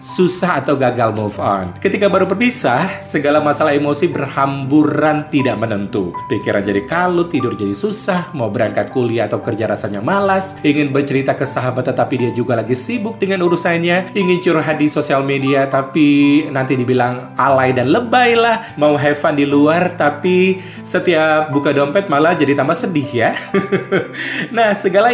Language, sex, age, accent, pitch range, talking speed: Indonesian, male, 30-49, native, 125-175 Hz, 160 wpm